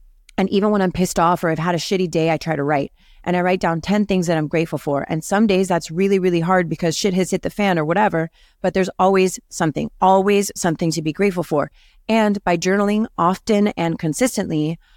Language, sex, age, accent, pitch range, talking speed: English, female, 30-49, American, 155-195 Hz, 230 wpm